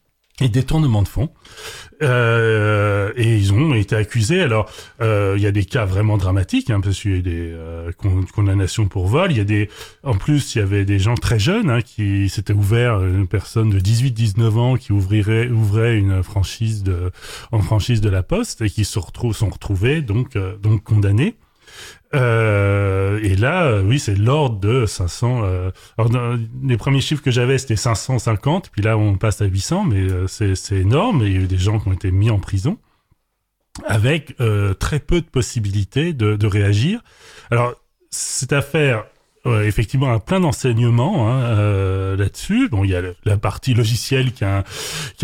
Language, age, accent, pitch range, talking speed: French, 30-49, French, 100-125 Hz, 195 wpm